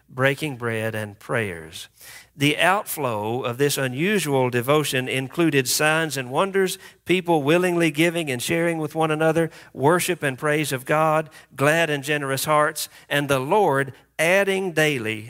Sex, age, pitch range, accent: male, 50-69, 130-165 Hz, American